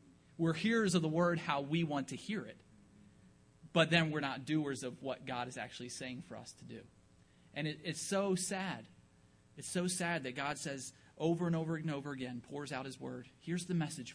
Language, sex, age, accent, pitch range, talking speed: English, male, 30-49, American, 125-165 Hz, 210 wpm